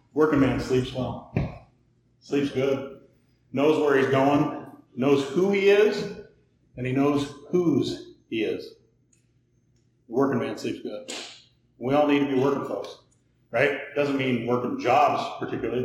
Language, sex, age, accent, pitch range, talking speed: English, male, 40-59, American, 135-170 Hz, 140 wpm